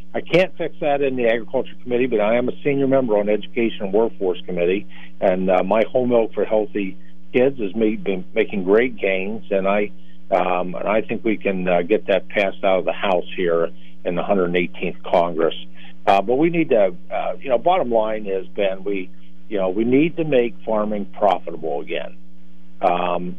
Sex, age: male, 50-69